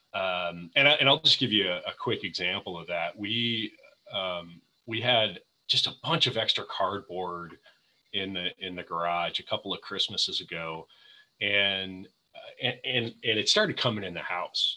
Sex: male